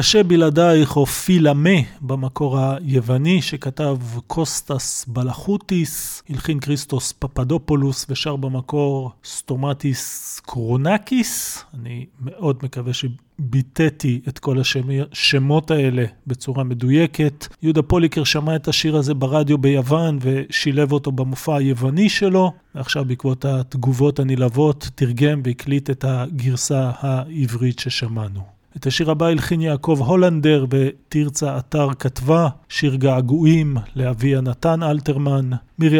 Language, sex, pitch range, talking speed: Hebrew, male, 130-150 Hz, 110 wpm